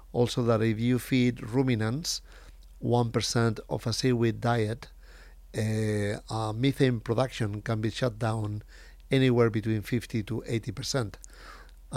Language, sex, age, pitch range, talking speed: English, male, 50-69, 110-130 Hz, 120 wpm